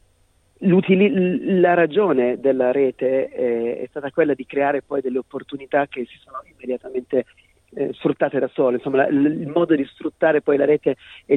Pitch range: 125-150 Hz